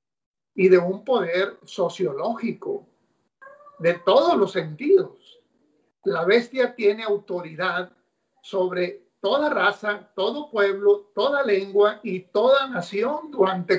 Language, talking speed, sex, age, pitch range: Spanish, 105 wpm, male, 50-69, 185-260 Hz